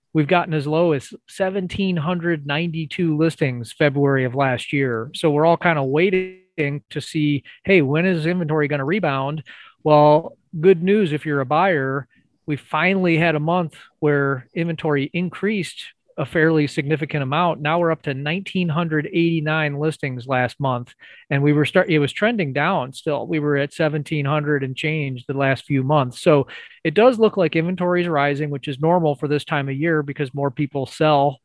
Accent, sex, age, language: American, male, 30-49, English